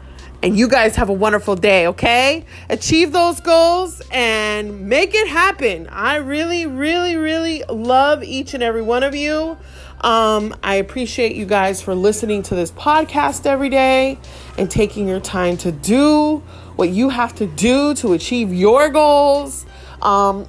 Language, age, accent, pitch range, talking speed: English, 30-49, American, 180-275 Hz, 160 wpm